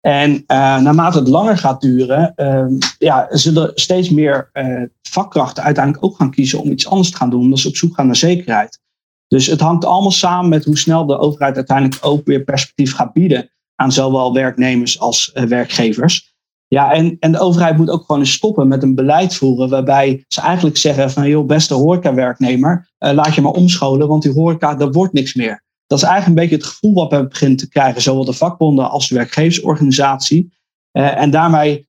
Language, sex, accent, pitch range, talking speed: Dutch, male, Dutch, 135-165 Hz, 200 wpm